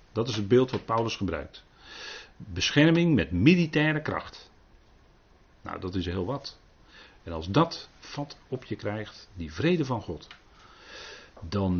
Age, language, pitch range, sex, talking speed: 40-59, Dutch, 90-115 Hz, male, 140 wpm